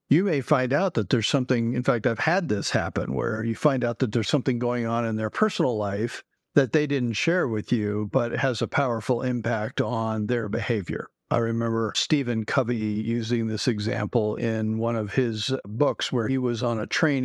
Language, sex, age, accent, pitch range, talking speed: English, male, 50-69, American, 110-130 Hz, 200 wpm